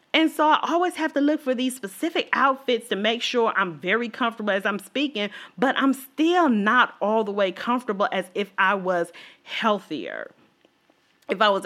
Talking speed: 185 wpm